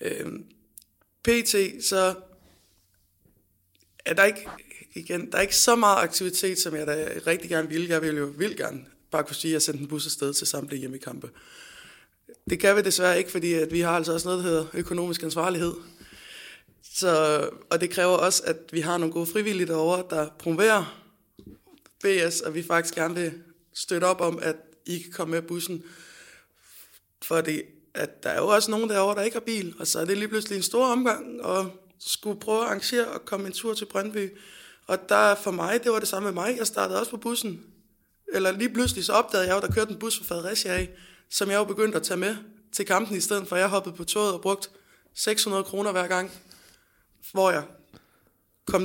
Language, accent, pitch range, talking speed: Danish, native, 165-205 Hz, 205 wpm